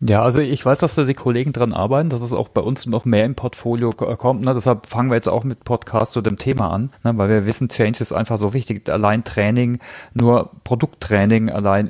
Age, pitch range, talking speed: 40-59, 110-130 Hz, 220 wpm